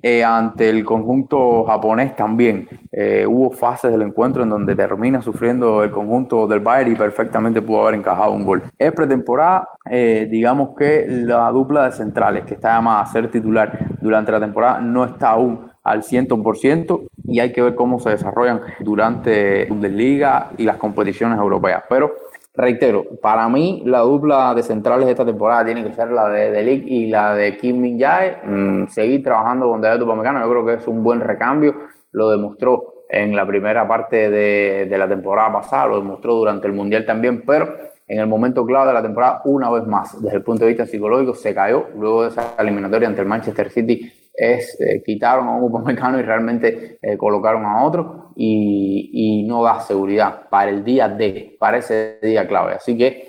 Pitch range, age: 105-125 Hz, 20-39